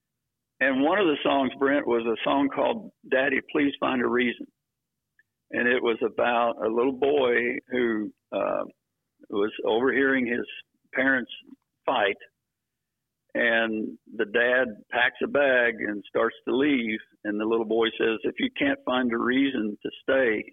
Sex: male